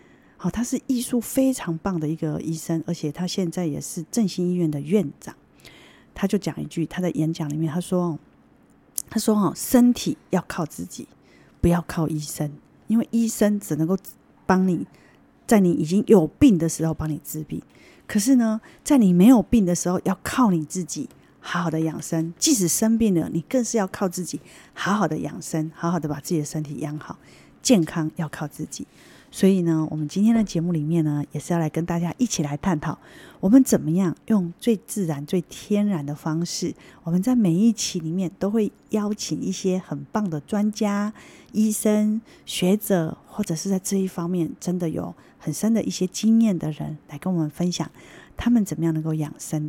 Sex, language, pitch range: female, Chinese, 160-210 Hz